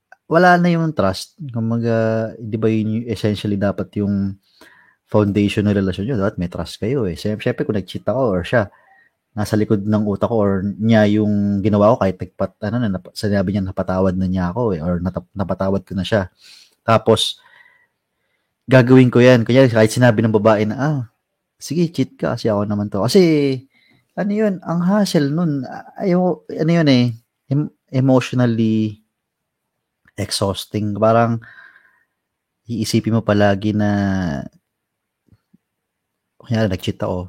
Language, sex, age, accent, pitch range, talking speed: Filipino, male, 20-39, native, 95-125 Hz, 145 wpm